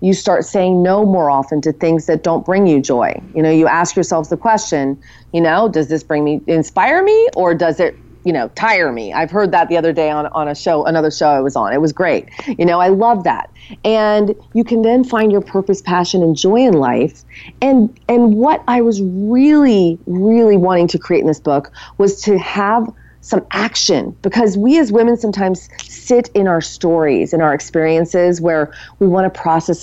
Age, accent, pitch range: 40-59, American, 160-220 Hz